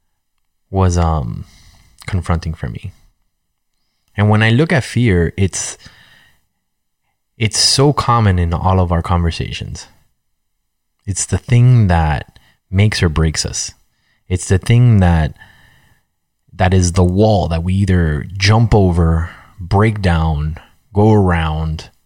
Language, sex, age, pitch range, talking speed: English, male, 20-39, 85-105 Hz, 120 wpm